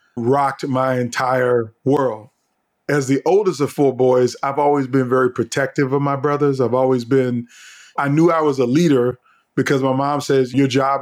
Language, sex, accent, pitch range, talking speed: English, male, American, 120-140 Hz, 180 wpm